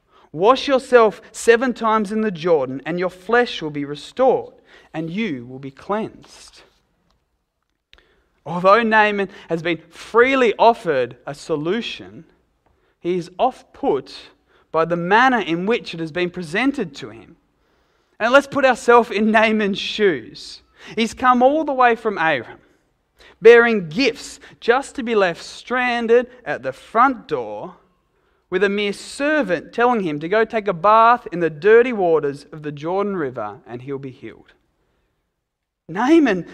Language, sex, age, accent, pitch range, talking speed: English, male, 30-49, Australian, 170-250 Hz, 145 wpm